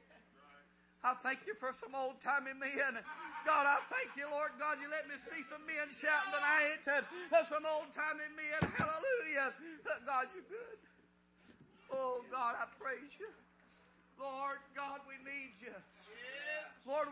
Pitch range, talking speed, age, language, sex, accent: 275-315 Hz, 140 wpm, 40-59, English, male, American